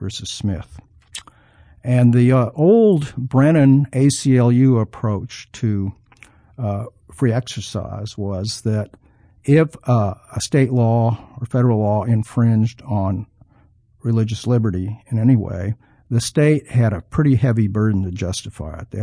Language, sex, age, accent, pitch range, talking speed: English, male, 50-69, American, 105-130 Hz, 130 wpm